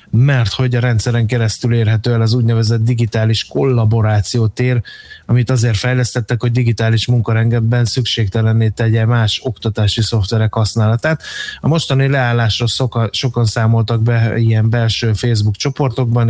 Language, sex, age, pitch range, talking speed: Hungarian, male, 20-39, 110-125 Hz, 120 wpm